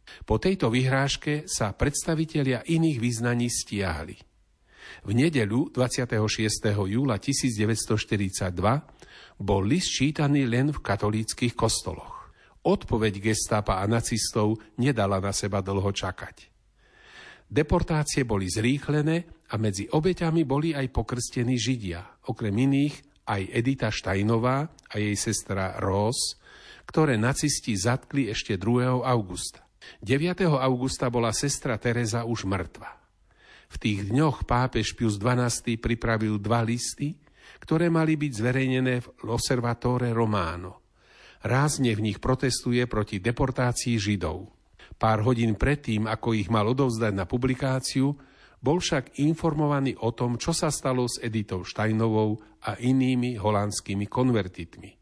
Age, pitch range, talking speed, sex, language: 50-69, 105-135 Hz, 115 wpm, male, Slovak